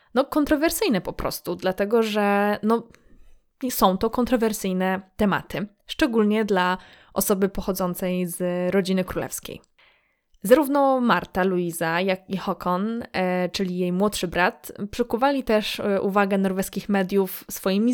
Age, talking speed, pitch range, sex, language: 20-39, 115 wpm, 185-220 Hz, female, Polish